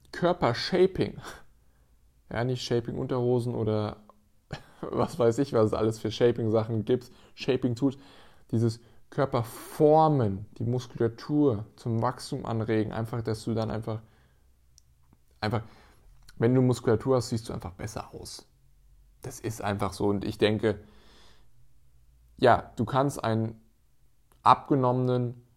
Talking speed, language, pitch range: 125 wpm, German, 110-130 Hz